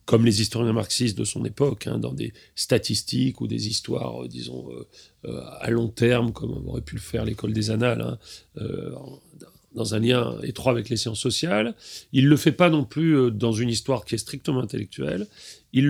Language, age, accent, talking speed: French, 40-59, French, 205 wpm